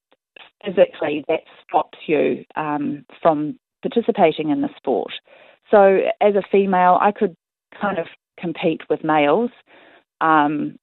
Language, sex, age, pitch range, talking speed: English, female, 30-49, 150-185 Hz, 120 wpm